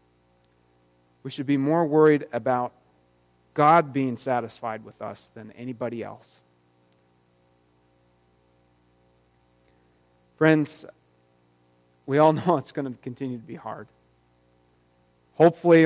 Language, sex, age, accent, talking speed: English, male, 30-49, American, 100 wpm